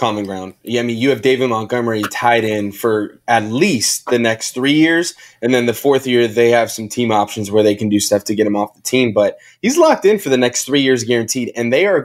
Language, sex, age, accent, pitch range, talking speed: English, male, 20-39, American, 115-140 Hz, 260 wpm